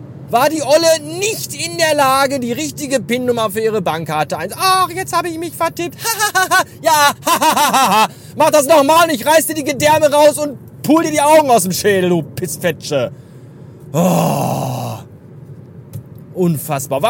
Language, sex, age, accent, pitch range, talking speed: German, male, 40-59, German, 195-305 Hz, 150 wpm